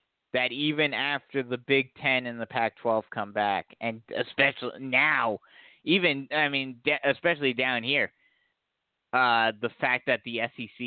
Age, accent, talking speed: 30-49, American, 150 wpm